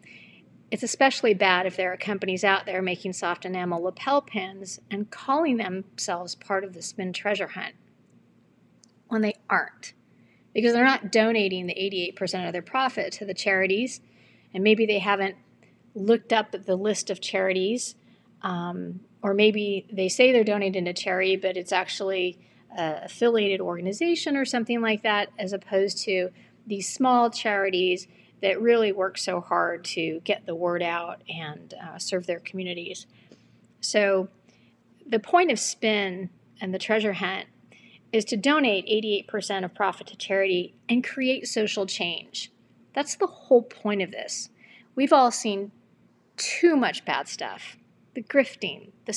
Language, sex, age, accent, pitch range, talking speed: English, female, 40-59, American, 185-225 Hz, 155 wpm